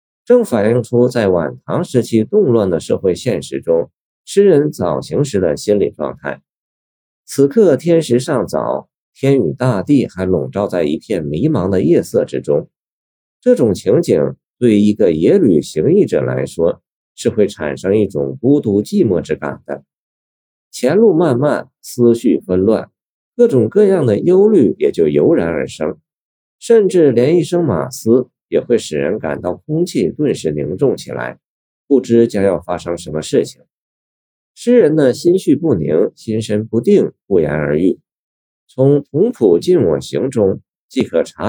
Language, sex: Chinese, male